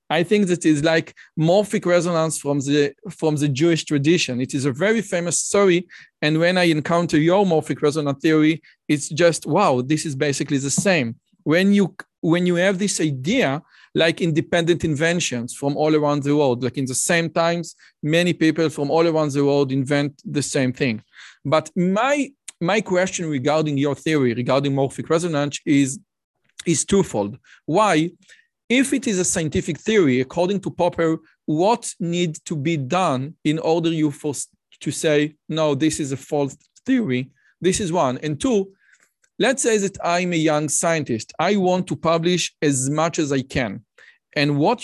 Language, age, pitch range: Hebrew, 40-59, 145-180 Hz